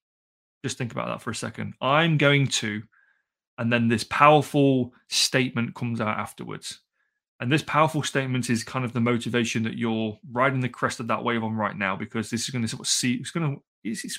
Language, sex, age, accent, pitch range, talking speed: English, male, 30-49, British, 115-140 Hz, 205 wpm